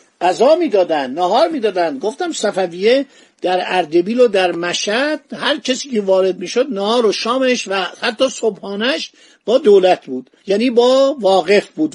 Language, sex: Persian, male